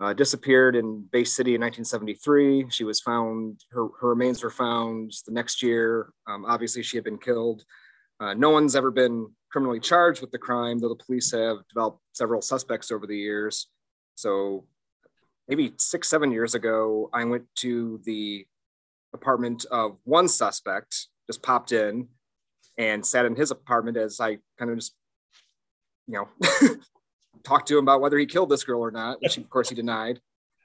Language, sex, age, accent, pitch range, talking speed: English, male, 30-49, American, 115-130 Hz, 175 wpm